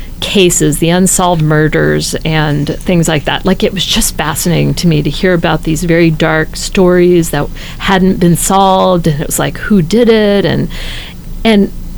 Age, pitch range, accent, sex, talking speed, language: 40-59, 170-210 Hz, American, female, 175 wpm, English